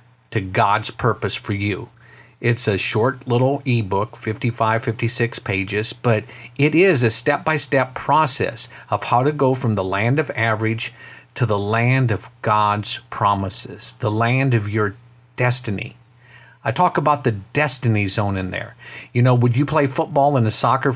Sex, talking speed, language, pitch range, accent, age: male, 165 wpm, English, 110-135 Hz, American, 50-69